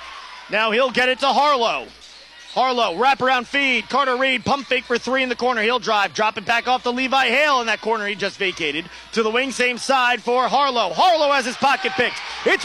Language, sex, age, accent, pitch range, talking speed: English, male, 30-49, American, 220-265 Hz, 220 wpm